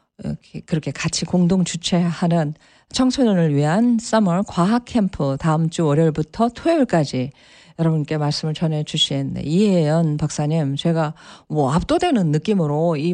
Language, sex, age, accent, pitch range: Japanese, female, 40-59, Korean, 160-215 Hz